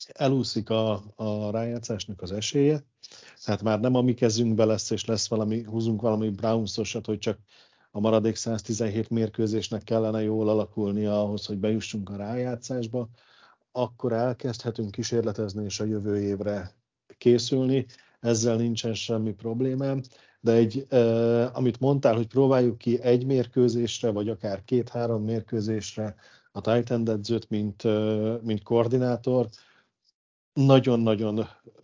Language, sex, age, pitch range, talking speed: Hungarian, male, 50-69, 110-125 Hz, 125 wpm